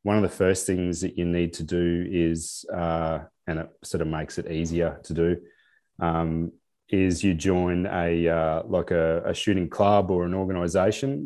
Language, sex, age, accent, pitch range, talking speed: English, male, 30-49, Australian, 85-100 Hz, 185 wpm